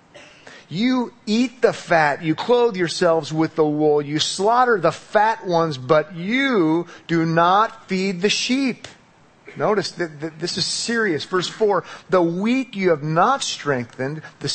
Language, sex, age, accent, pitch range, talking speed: English, male, 40-59, American, 145-205 Hz, 150 wpm